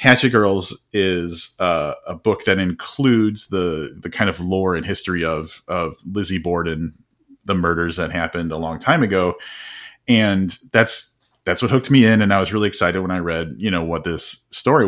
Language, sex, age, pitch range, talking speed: English, male, 30-49, 85-110 Hz, 190 wpm